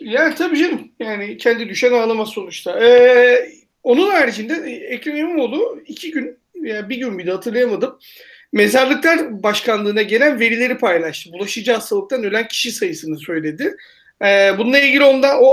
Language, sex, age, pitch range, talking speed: Turkish, male, 40-59, 205-275 Hz, 145 wpm